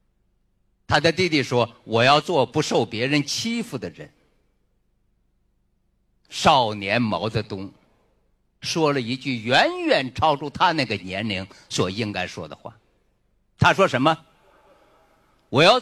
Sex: male